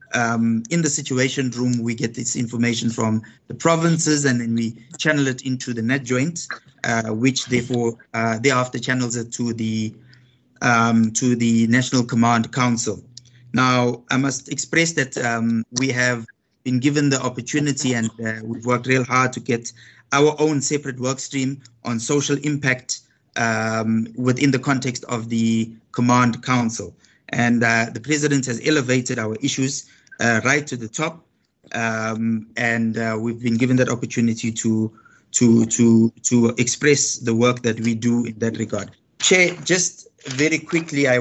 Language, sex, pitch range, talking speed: English, male, 115-135 Hz, 160 wpm